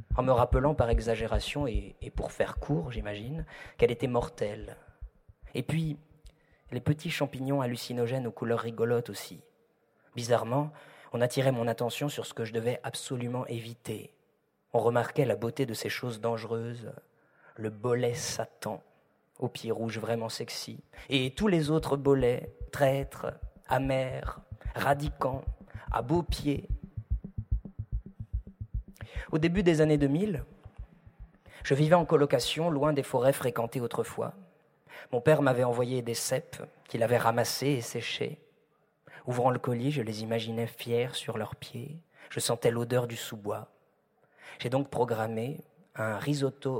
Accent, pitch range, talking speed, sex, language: French, 115-145 Hz, 140 wpm, male, French